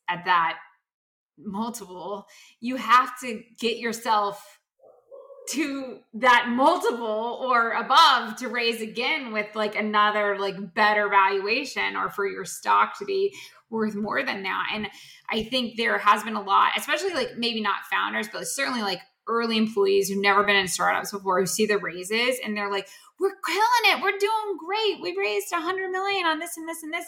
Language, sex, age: English, female, 20-39